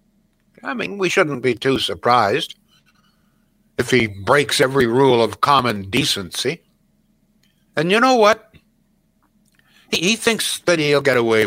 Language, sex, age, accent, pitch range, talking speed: English, male, 60-79, American, 125-205 Hz, 135 wpm